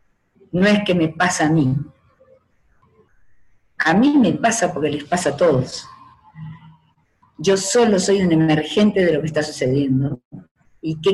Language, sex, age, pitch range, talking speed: Spanish, female, 50-69, 165-220 Hz, 150 wpm